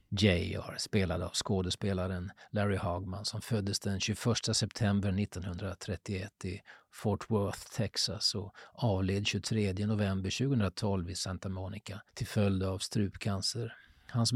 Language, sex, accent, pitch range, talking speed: Swedish, male, native, 95-115 Hz, 120 wpm